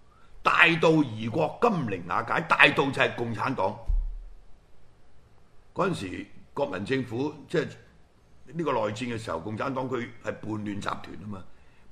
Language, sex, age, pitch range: Chinese, male, 60-79, 95-130 Hz